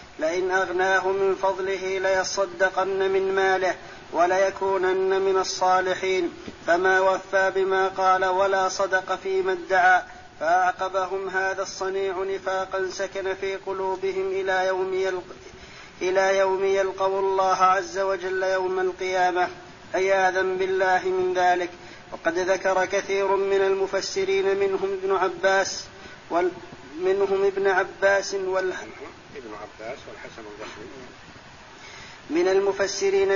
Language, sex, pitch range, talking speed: Arabic, male, 190-195 Hz, 100 wpm